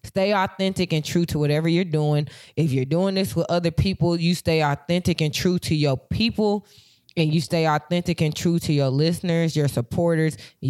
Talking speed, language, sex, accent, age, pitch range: 195 wpm, English, female, American, 20-39, 140-170 Hz